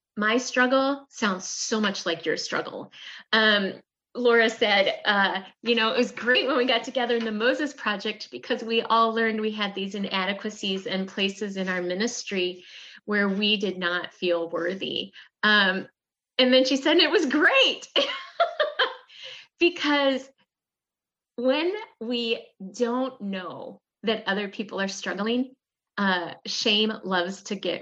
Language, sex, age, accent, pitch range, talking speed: English, female, 30-49, American, 180-235 Hz, 140 wpm